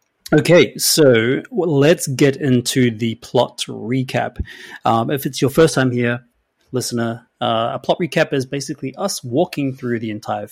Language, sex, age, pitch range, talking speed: English, male, 30-49, 115-145 Hz, 155 wpm